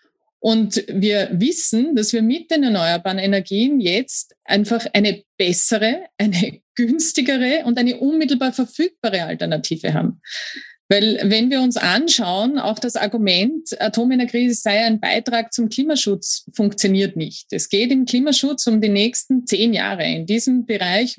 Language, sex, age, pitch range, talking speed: German, female, 30-49, 200-245 Hz, 140 wpm